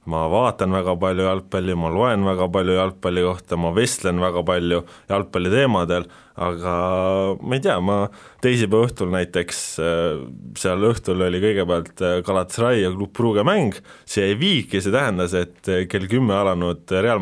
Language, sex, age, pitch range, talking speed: English, male, 20-39, 85-105 Hz, 155 wpm